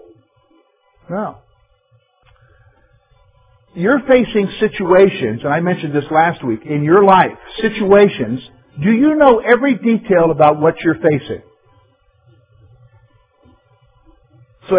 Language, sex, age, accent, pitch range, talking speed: English, male, 50-69, American, 125-210 Hz, 95 wpm